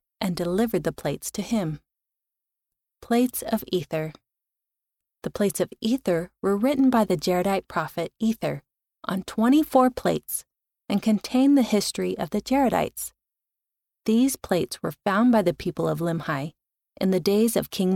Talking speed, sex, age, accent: 145 wpm, female, 30-49, American